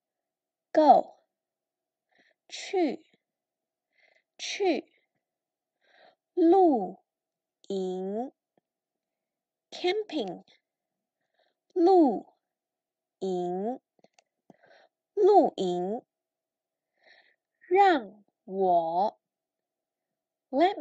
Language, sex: English, female